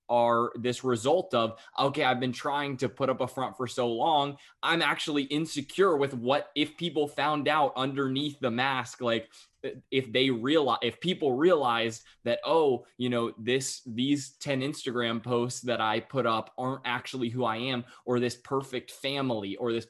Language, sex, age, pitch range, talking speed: English, male, 20-39, 115-135 Hz, 180 wpm